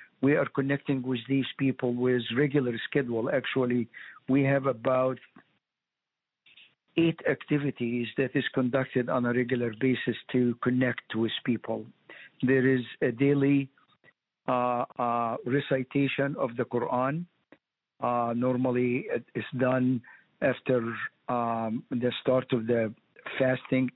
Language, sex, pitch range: English, male, 125-140 Hz